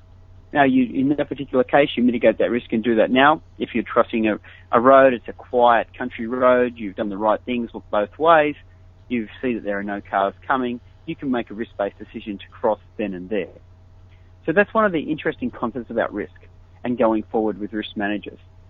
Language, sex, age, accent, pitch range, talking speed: English, male, 30-49, Australian, 95-125 Hz, 215 wpm